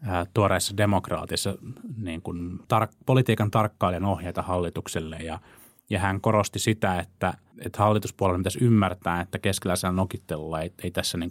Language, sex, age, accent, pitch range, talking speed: Finnish, male, 30-49, native, 90-110 Hz, 140 wpm